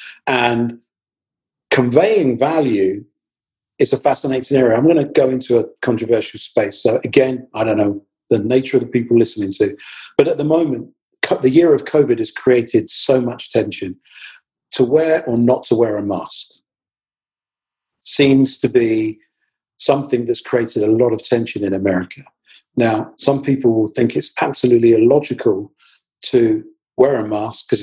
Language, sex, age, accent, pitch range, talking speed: English, male, 40-59, British, 115-140 Hz, 160 wpm